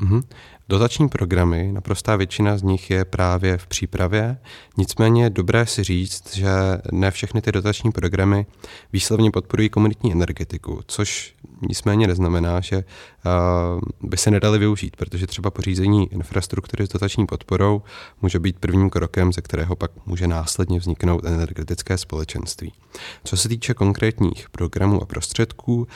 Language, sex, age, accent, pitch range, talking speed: Czech, male, 30-49, native, 85-105 Hz, 140 wpm